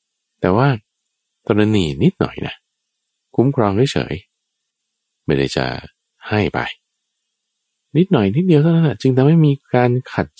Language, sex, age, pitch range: Thai, male, 20-39, 75-130 Hz